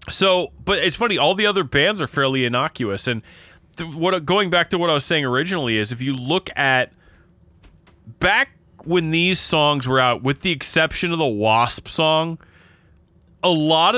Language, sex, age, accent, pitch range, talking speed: English, male, 20-39, American, 110-160 Hz, 180 wpm